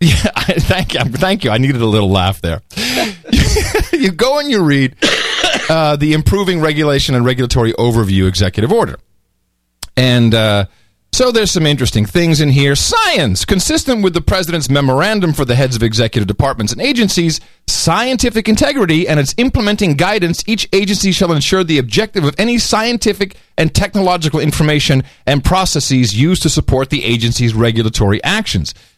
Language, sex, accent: English, male, American